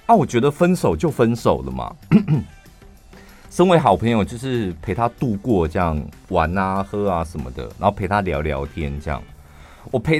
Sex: male